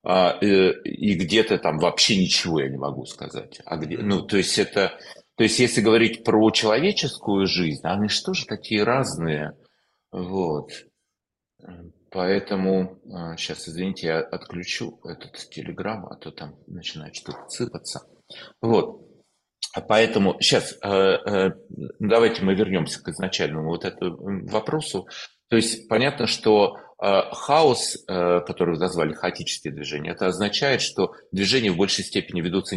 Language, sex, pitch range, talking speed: Russian, male, 80-105 Hz, 130 wpm